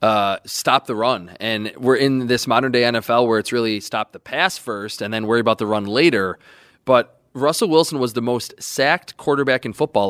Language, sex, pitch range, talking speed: English, male, 115-140 Hz, 200 wpm